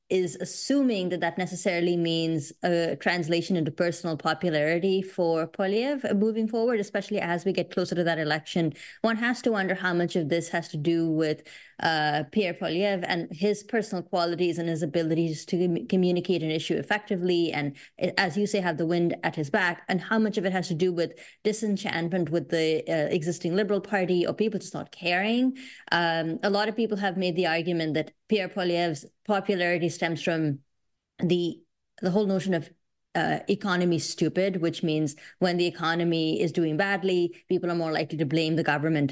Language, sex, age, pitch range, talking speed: English, female, 20-39, 165-190 Hz, 185 wpm